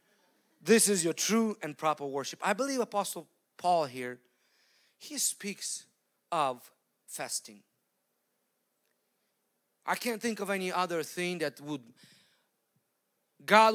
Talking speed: 115 wpm